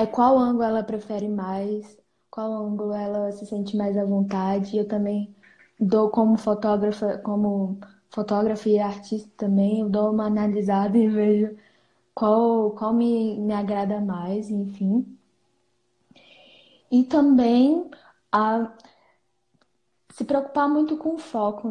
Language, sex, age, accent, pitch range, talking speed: Portuguese, female, 10-29, Brazilian, 205-230 Hz, 125 wpm